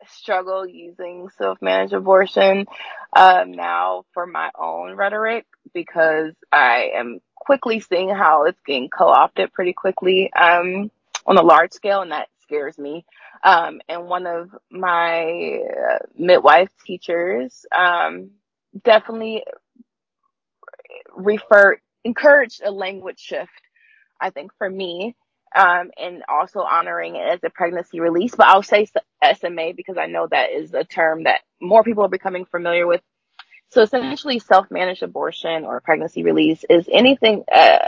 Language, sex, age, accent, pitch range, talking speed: English, female, 20-39, American, 170-230 Hz, 135 wpm